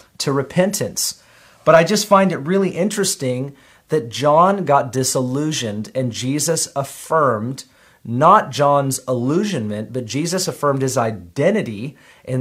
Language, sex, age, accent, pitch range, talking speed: English, male, 40-59, American, 125-150 Hz, 120 wpm